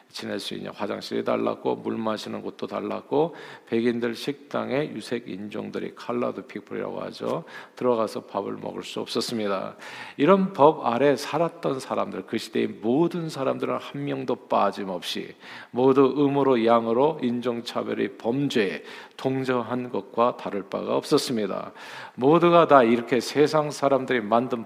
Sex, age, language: male, 50-69, Korean